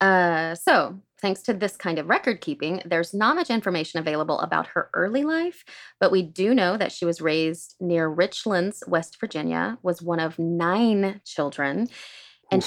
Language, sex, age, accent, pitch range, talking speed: English, female, 30-49, American, 160-210 Hz, 170 wpm